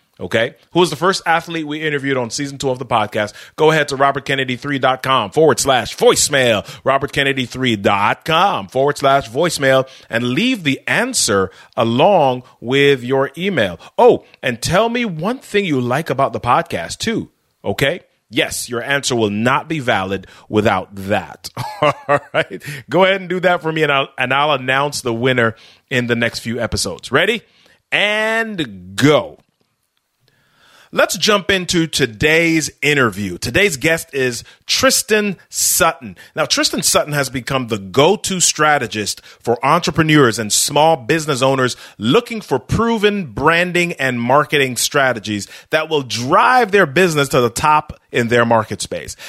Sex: male